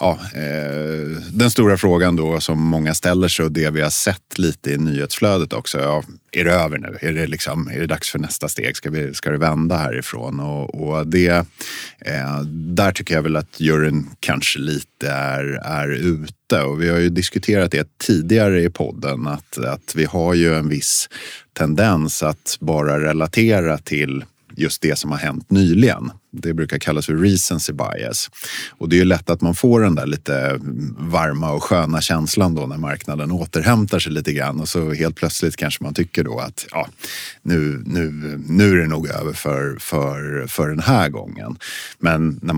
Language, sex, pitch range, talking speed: Swedish, male, 75-85 Hz, 185 wpm